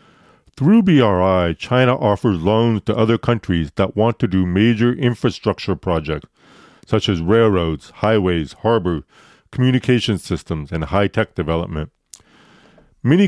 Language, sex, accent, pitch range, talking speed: English, male, American, 90-125 Hz, 115 wpm